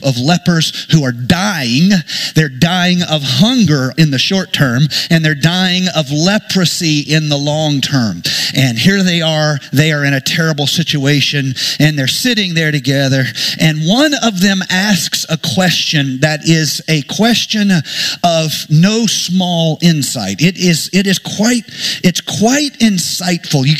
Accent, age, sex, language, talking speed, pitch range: American, 40-59, male, English, 160 wpm, 150-195 Hz